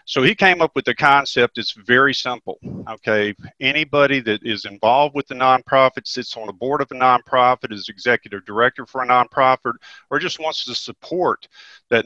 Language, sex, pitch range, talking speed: English, male, 115-135 Hz, 185 wpm